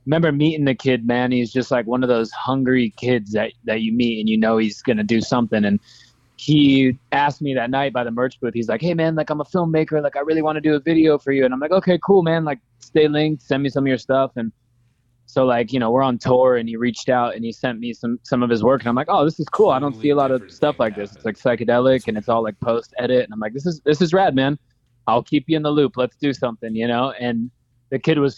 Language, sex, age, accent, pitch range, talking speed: English, male, 20-39, American, 120-140 Hz, 290 wpm